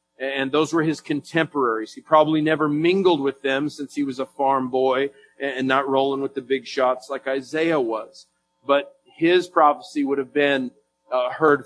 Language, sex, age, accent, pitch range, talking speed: English, male, 40-59, American, 135-165 Hz, 175 wpm